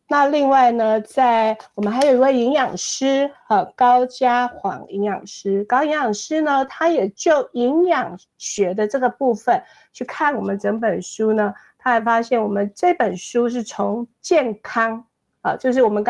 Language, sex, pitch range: Chinese, female, 210-270 Hz